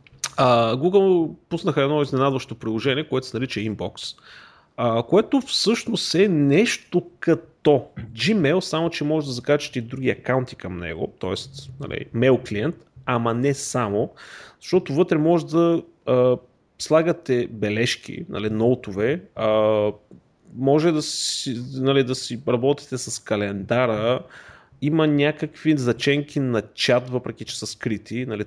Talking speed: 120 wpm